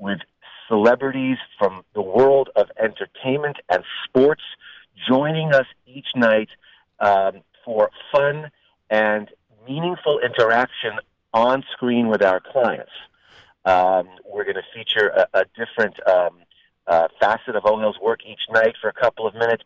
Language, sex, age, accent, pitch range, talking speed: English, male, 40-59, American, 105-135 Hz, 135 wpm